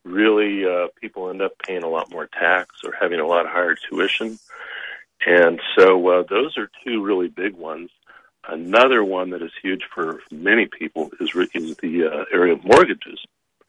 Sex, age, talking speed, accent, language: male, 50-69, 175 wpm, American, English